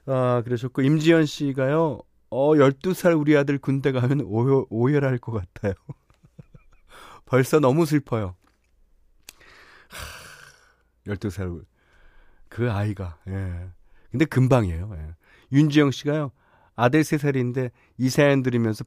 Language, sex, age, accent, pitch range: Korean, male, 30-49, native, 100-145 Hz